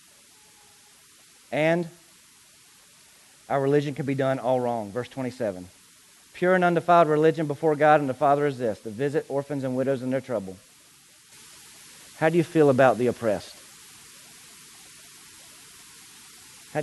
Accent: American